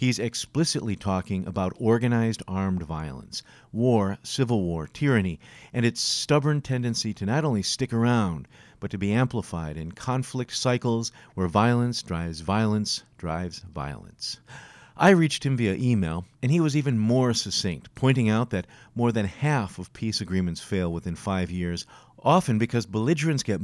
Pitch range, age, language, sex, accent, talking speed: 95-125 Hz, 50-69, English, male, American, 155 wpm